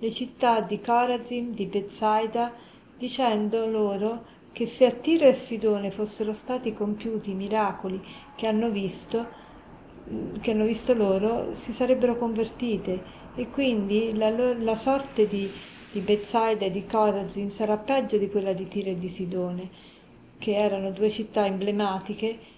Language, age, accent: Italian, 40-59, native